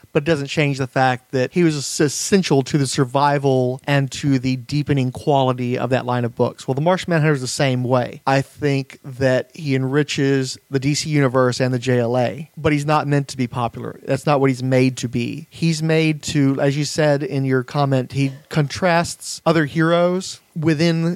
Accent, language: American, English